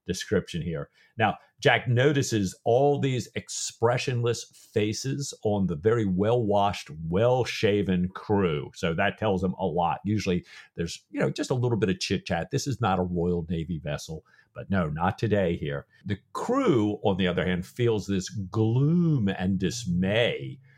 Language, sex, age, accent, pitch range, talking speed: English, male, 50-69, American, 95-145 Hz, 155 wpm